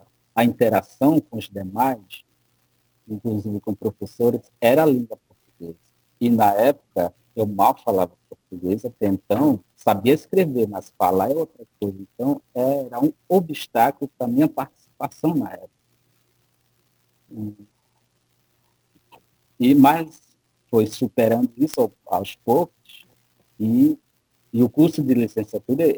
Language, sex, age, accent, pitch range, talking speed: Portuguese, male, 50-69, Brazilian, 90-125 Hz, 115 wpm